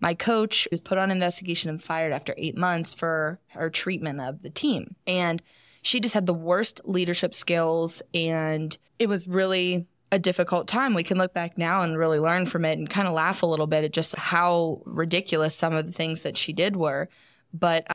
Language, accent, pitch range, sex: English, American, 155-185 Hz, female